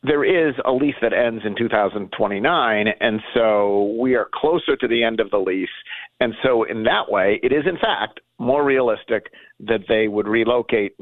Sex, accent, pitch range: male, American, 110-170 Hz